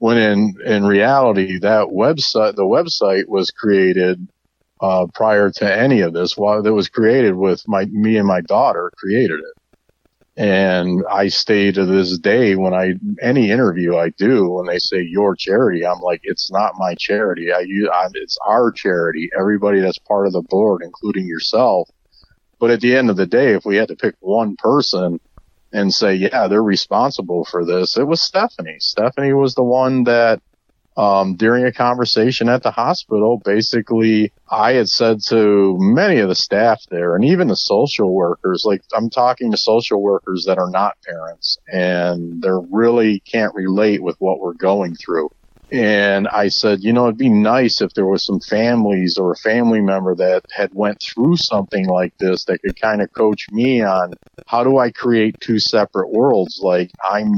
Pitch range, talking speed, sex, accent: 95-115 Hz, 185 wpm, male, American